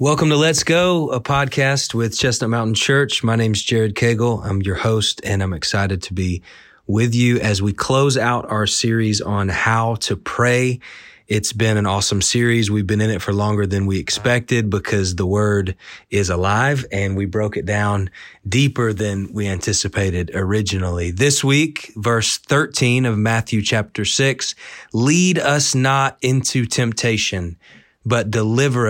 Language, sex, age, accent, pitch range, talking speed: English, male, 30-49, American, 100-120 Hz, 160 wpm